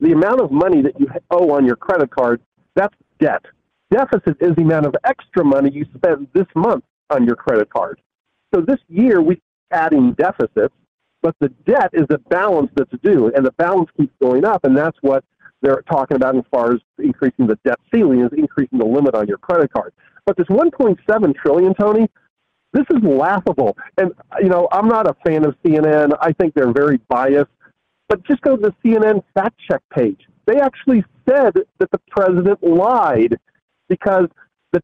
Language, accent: English, American